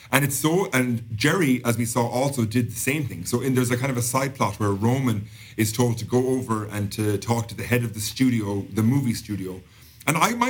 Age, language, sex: 40-59, English, male